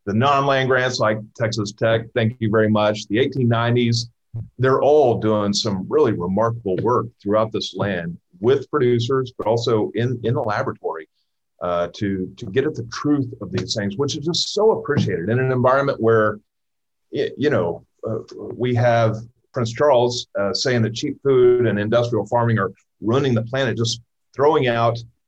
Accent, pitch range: American, 100-125 Hz